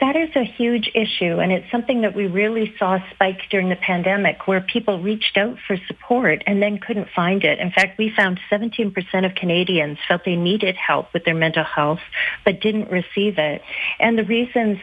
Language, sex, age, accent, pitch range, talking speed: English, female, 40-59, American, 180-215 Hz, 200 wpm